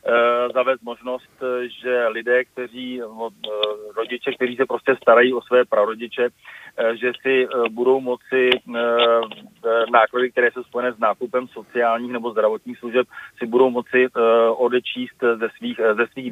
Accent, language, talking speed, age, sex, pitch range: native, Czech, 125 wpm, 40-59, male, 115-125 Hz